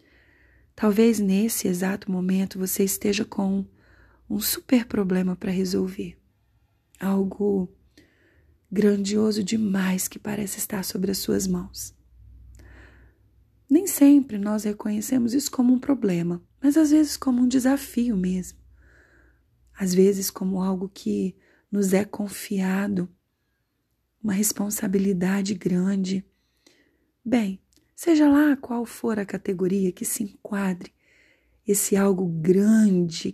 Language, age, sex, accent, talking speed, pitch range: Portuguese, 30-49, female, Brazilian, 110 wpm, 185-225 Hz